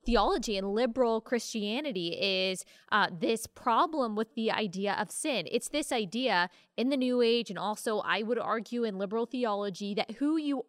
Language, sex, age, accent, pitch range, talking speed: English, female, 20-39, American, 210-270 Hz, 175 wpm